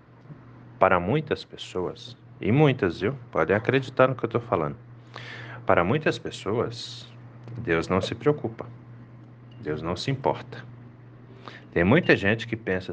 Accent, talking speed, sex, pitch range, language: Brazilian, 135 wpm, male, 95-120 Hz, Portuguese